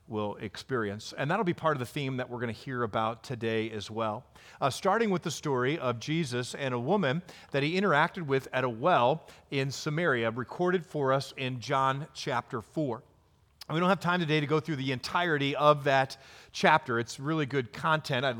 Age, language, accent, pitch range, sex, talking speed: 40-59, English, American, 125-170 Hz, male, 205 wpm